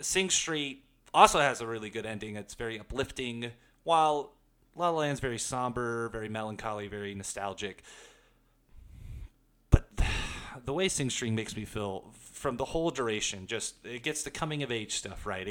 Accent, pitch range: American, 110-155 Hz